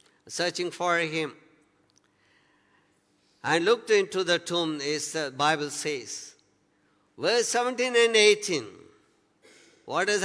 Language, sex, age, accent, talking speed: English, male, 50-69, Indian, 105 wpm